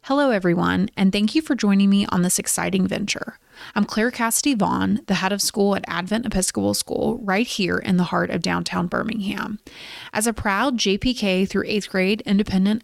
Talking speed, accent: 185 wpm, American